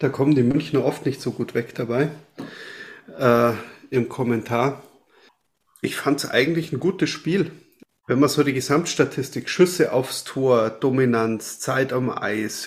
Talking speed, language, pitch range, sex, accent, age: 150 wpm, German, 120-155 Hz, male, German, 30-49